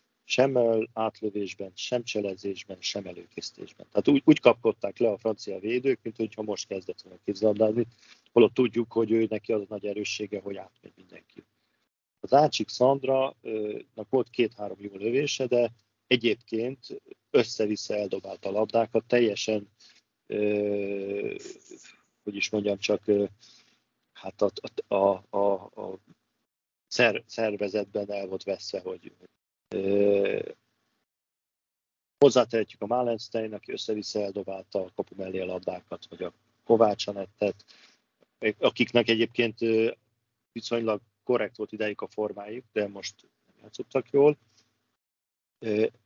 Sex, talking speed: male, 110 wpm